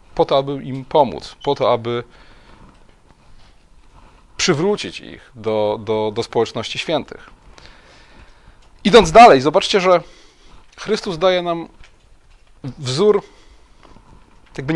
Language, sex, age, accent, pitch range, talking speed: Polish, male, 30-49, native, 135-180 Hz, 95 wpm